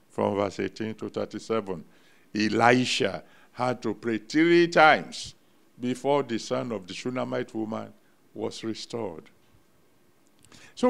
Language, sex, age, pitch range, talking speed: English, male, 60-79, 105-130 Hz, 115 wpm